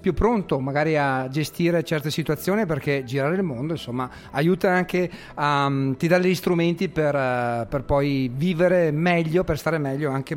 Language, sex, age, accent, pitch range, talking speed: Italian, male, 40-59, native, 135-180 Hz, 160 wpm